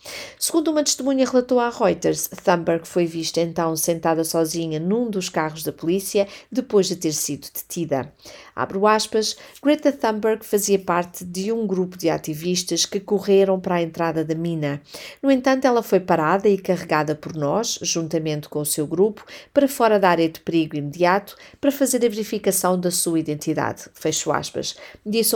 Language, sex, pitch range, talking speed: Portuguese, female, 160-220 Hz, 170 wpm